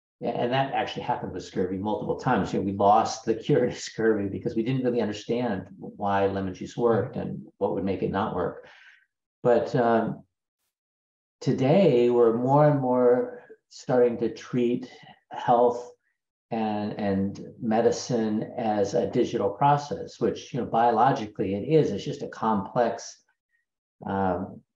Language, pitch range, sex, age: English, 95-120 Hz, male, 50-69